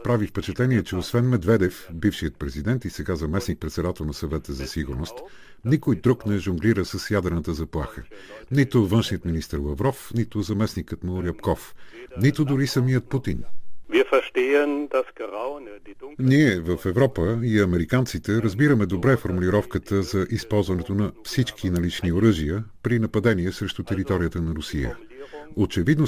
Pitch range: 90-120 Hz